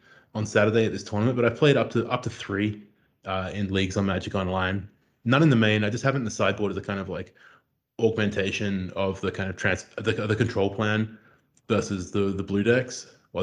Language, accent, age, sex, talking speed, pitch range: English, Australian, 20-39, male, 230 wpm, 95-110 Hz